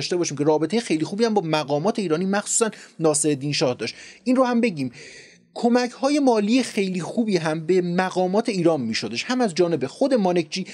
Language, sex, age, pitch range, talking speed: Persian, male, 30-49, 155-215 Hz, 190 wpm